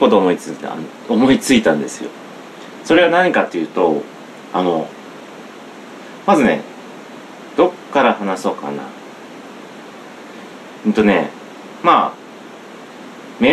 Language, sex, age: Japanese, male, 40-59